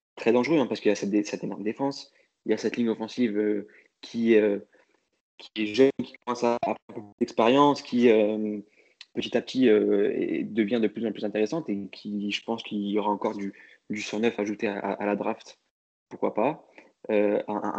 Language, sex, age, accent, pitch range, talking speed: French, male, 20-39, French, 105-125 Hz, 205 wpm